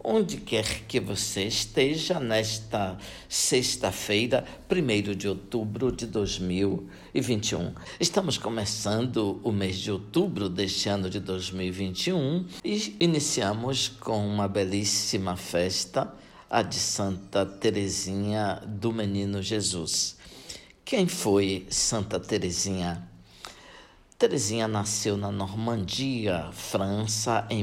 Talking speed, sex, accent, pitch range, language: 100 wpm, male, Brazilian, 95-120 Hz, Portuguese